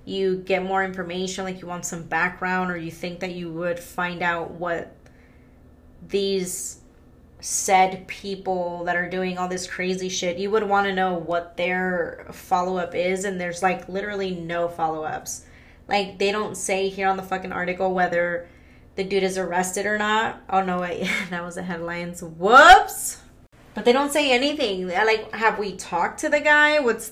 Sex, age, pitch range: female, 20-39, 180-230 Hz